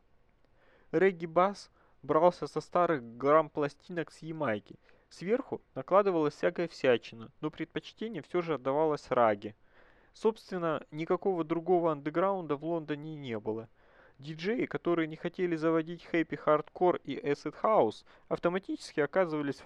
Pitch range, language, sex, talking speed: 140-175 Hz, Russian, male, 120 wpm